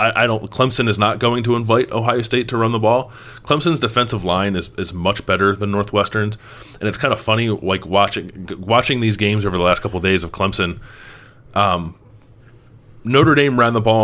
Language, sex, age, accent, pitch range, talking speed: English, male, 20-39, American, 90-115 Hz, 210 wpm